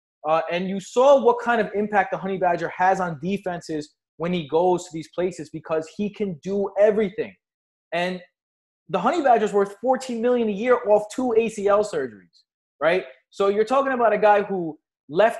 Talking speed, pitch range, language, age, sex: 185 wpm, 180-230 Hz, English, 20-39, male